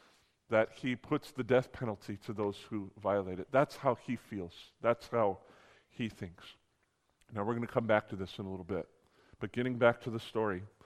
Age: 40-59